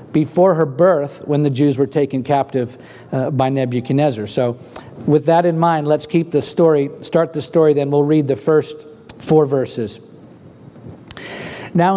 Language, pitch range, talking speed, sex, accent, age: English, 145-180 Hz, 160 wpm, male, American, 50-69